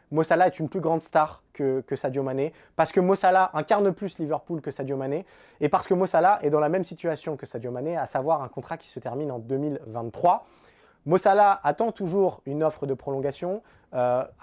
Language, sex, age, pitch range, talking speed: French, male, 20-39, 145-190 Hz, 200 wpm